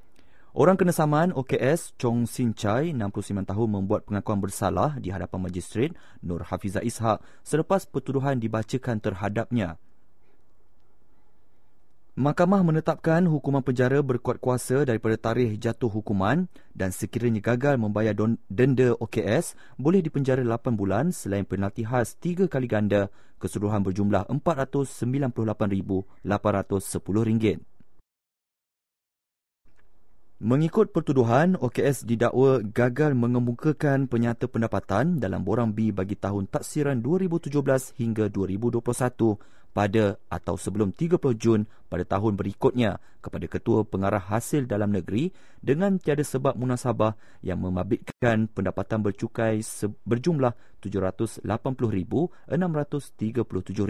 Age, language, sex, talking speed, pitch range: 30-49, English, male, 105 wpm, 100-135 Hz